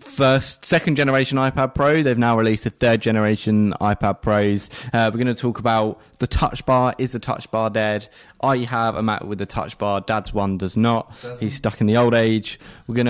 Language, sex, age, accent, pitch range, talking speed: English, male, 20-39, British, 100-120 Hz, 205 wpm